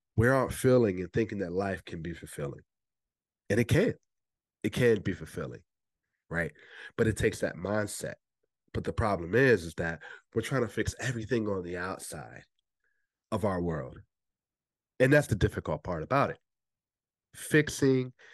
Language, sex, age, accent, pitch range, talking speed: English, male, 40-59, American, 90-120 Hz, 155 wpm